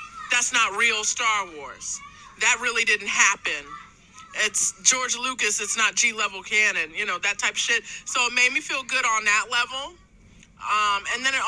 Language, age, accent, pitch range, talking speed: English, 40-59, American, 200-250 Hz, 185 wpm